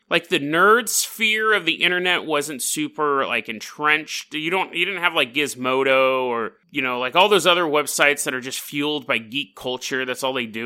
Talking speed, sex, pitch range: 210 wpm, male, 130-195 Hz